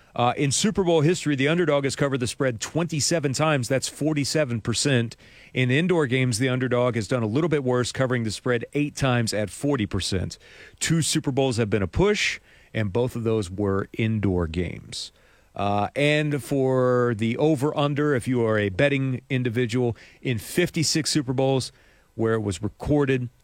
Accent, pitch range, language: American, 105-140 Hz, English